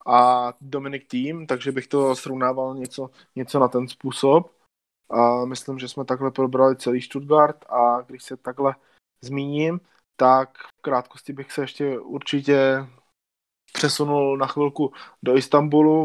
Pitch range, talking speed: 130-150 Hz, 140 wpm